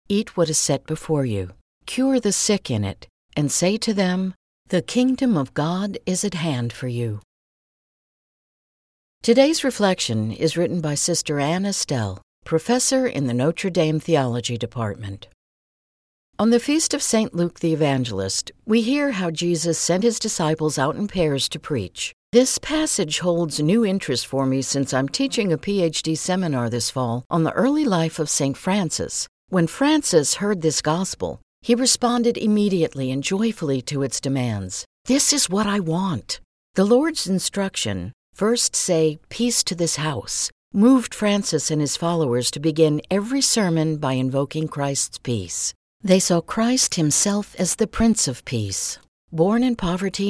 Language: English